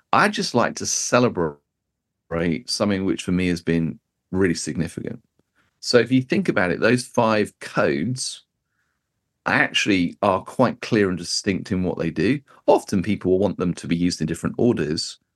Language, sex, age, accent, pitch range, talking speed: English, male, 40-59, British, 85-120 Hz, 165 wpm